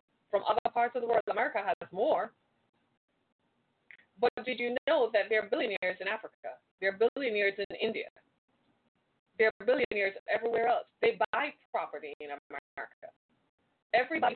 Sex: female